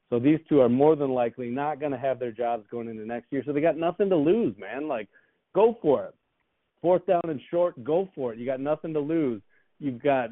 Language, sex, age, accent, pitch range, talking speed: English, male, 40-59, American, 120-155 Hz, 245 wpm